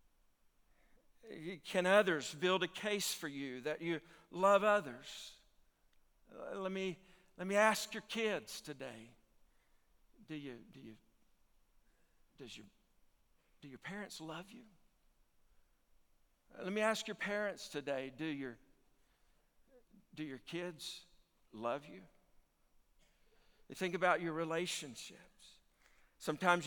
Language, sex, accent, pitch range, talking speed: English, male, American, 140-180 Hz, 110 wpm